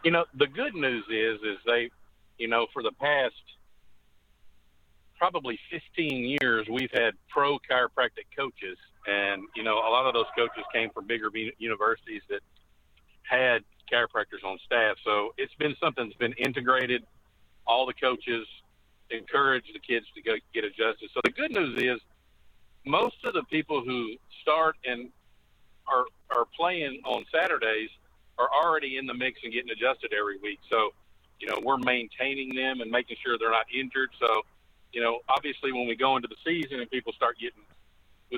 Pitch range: 115-140 Hz